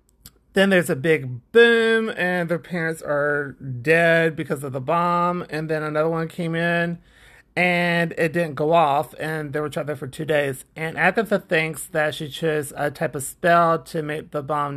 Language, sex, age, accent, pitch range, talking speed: English, male, 30-49, American, 145-170 Hz, 190 wpm